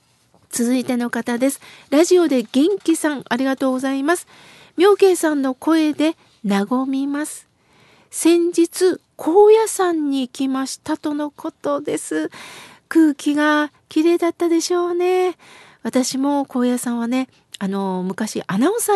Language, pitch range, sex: Japanese, 245-310 Hz, female